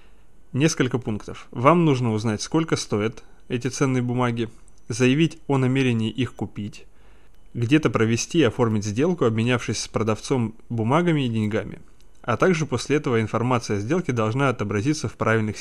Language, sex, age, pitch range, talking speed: Russian, male, 20-39, 110-140 Hz, 140 wpm